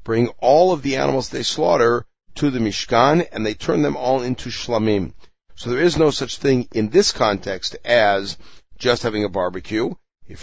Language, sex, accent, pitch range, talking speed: English, male, American, 100-130 Hz, 185 wpm